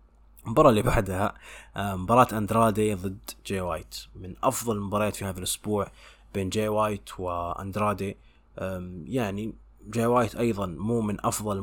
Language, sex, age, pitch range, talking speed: English, male, 20-39, 100-115 Hz, 135 wpm